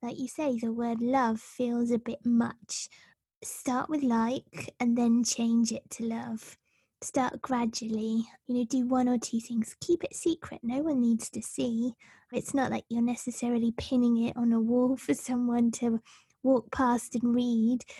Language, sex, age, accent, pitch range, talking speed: English, female, 20-39, British, 230-250 Hz, 175 wpm